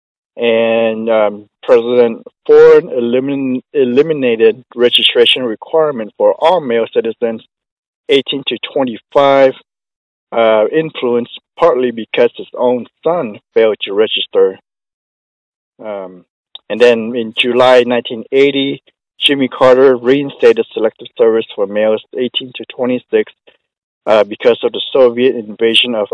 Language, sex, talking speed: English, male, 110 wpm